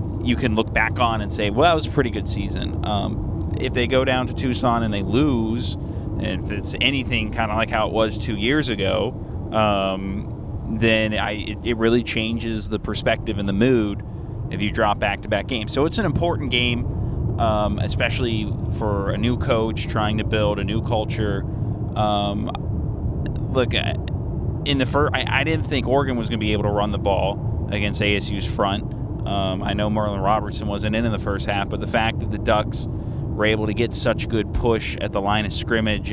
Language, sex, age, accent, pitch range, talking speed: English, male, 20-39, American, 100-115 Hz, 205 wpm